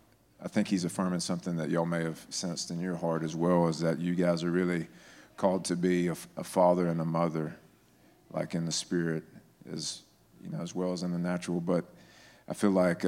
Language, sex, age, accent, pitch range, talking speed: Russian, male, 40-59, American, 85-95 Hz, 215 wpm